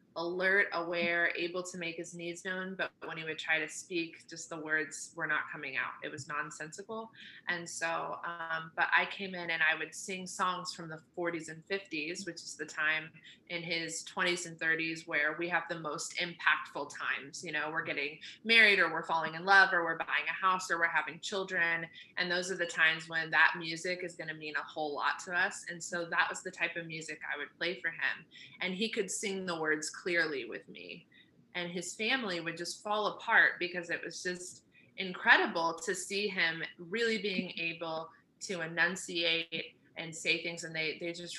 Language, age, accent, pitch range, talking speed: English, 20-39, American, 160-180 Hz, 205 wpm